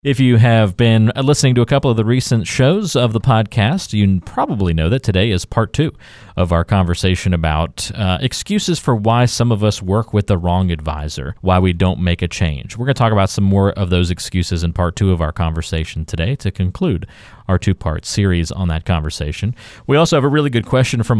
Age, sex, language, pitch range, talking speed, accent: 40-59, male, English, 90-120 Hz, 220 wpm, American